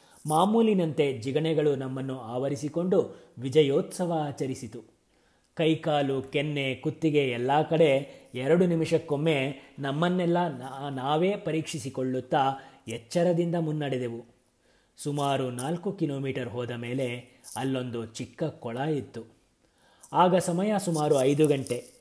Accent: native